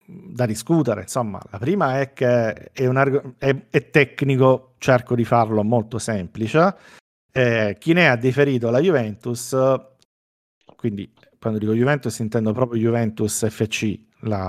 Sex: male